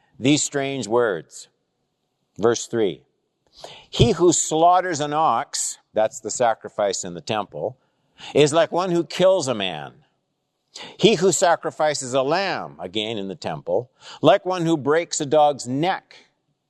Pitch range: 125-170 Hz